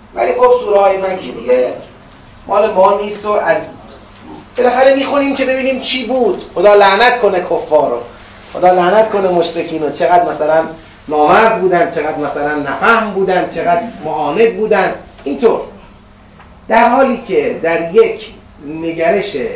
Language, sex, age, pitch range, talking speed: Persian, male, 30-49, 135-200 Hz, 135 wpm